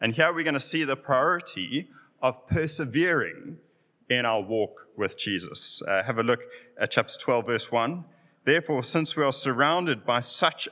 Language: English